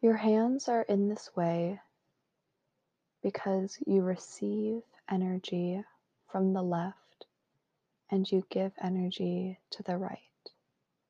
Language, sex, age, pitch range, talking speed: English, female, 20-39, 180-200 Hz, 110 wpm